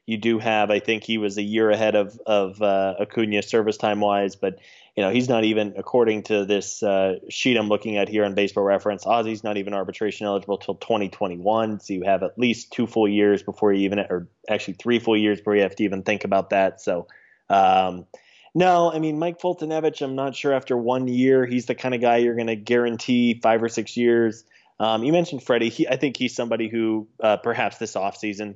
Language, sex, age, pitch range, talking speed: English, male, 20-39, 100-115 Hz, 225 wpm